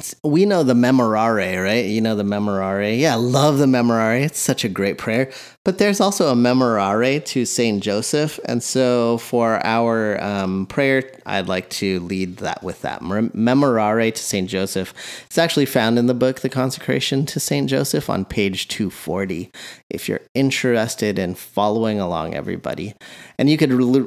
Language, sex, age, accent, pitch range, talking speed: English, male, 30-49, American, 100-130 Hz, 170 wpm